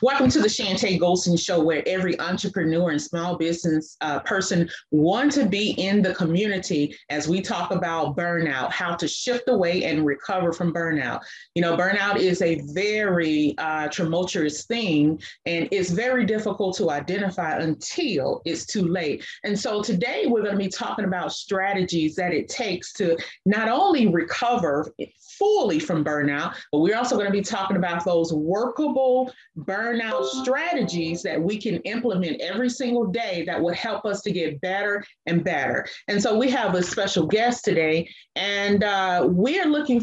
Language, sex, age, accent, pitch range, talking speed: English, female, 30-49, American, 170-230 Hz, 170 wpm